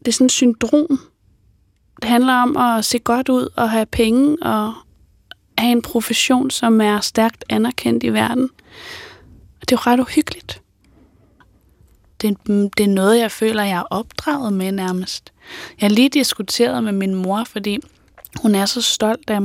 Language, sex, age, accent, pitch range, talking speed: Danish, female, 20-39, native, 210-250 Hz, 155 wpm